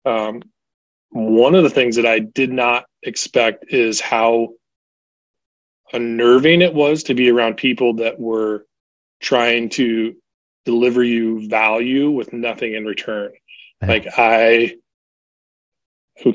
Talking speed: 120 wpm